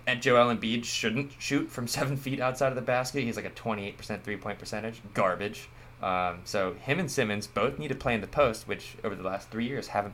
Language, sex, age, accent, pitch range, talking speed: English, male, 20-39, American, 110-140 Hz, 220 wpm